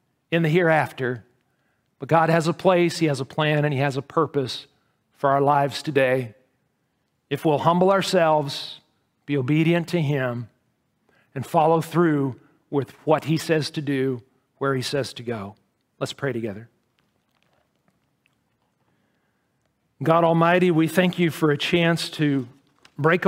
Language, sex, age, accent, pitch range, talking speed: English, male, 50-69, American, 140-180 Hz, 145 wpm